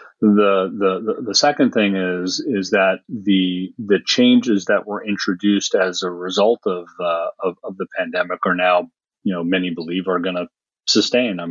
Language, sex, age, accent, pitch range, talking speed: English, male, 40-59, American, 90-100 Hz, 175 wpm